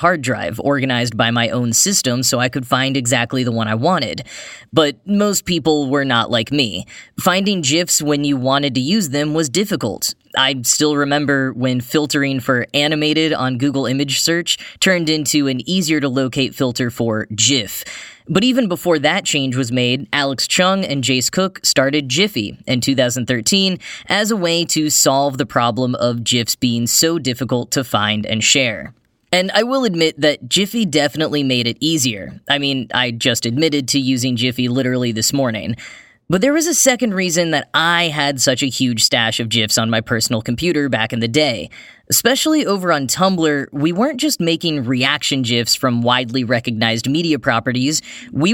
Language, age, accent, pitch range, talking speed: English, 10-29, American, 125-165 Hz, 180 wpm